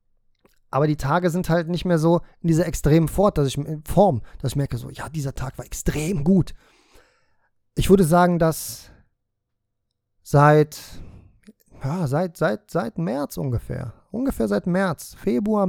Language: German